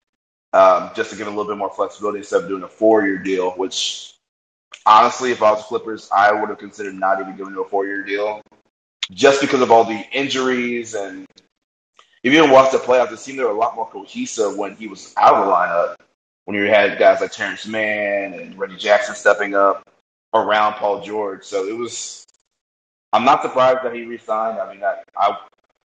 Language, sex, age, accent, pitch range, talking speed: English, male, 30-49, American, 100-125 Hz, 200 wpm